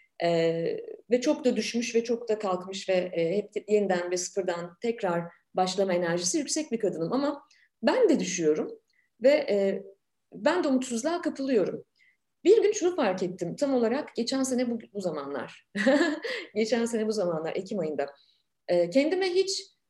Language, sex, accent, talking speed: Turkish, female, native, 155 wpm